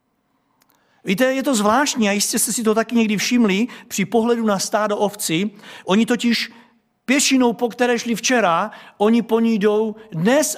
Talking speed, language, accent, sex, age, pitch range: 165 wpm, Czech, native, male, 50-69, 195-235 Hz